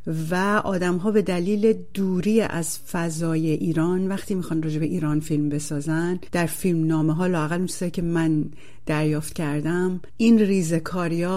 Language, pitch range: Persian, 160-195 Hz